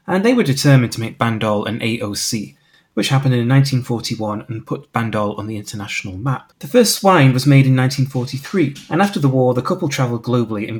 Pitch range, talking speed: 115-140 Hz, 200 wpm